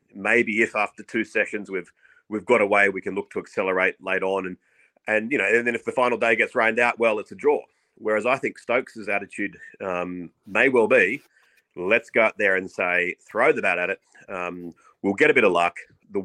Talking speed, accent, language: 225 wpm, Australian, English